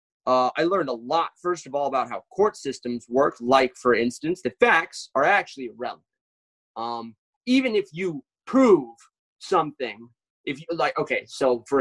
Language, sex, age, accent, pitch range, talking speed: English, male, 30-49, American, 120-160 Hz, 170 wpm